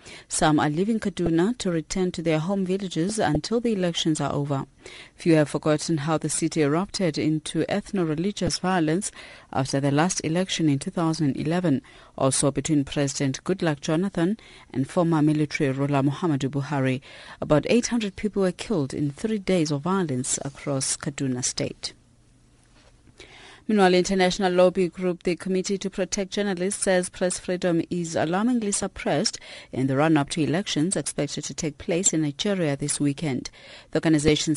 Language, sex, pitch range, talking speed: English, female, 145-185 Hz, 150 wpm